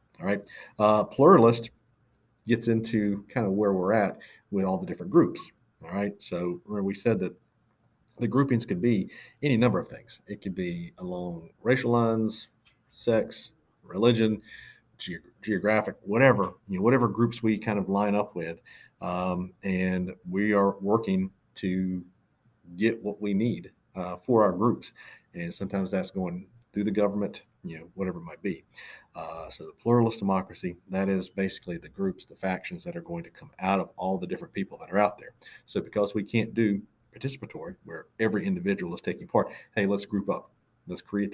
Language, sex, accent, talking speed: English, male, American, 175 wpm